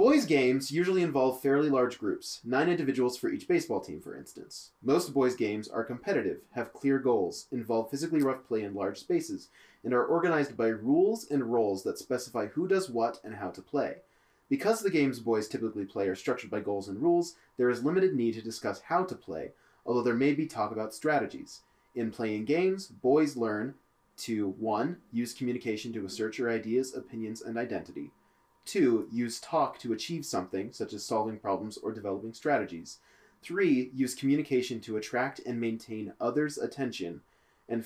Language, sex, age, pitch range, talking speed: English, male, 30-49, 110-145 Hz, 180 wpm